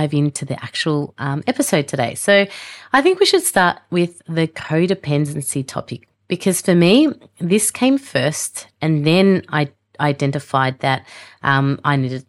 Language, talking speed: English, 145 wpm